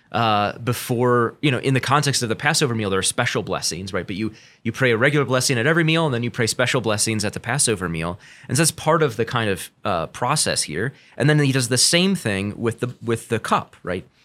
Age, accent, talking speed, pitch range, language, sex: 30-49, American, 250 wpm, 110-145 Hz, English, male